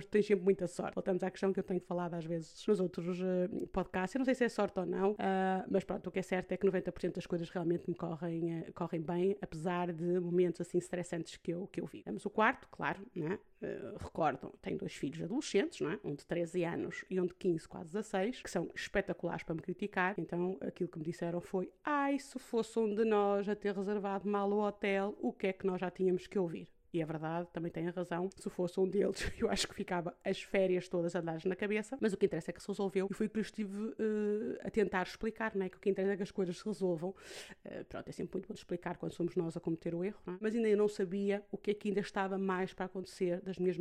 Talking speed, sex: 260 wpm, female